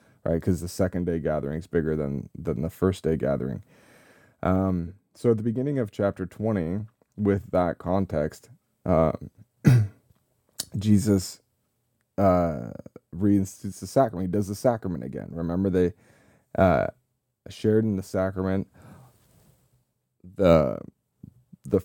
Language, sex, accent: English, male, American